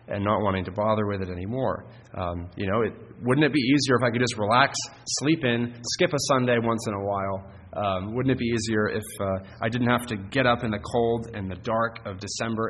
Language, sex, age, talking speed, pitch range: English, male, 30-49, 235 wpm, 105-125 Hz